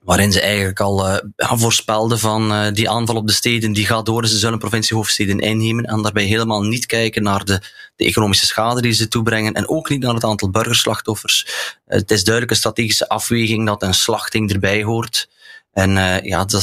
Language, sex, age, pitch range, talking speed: Dutch, male, 30-49, 100-115 Hz, 200 wpm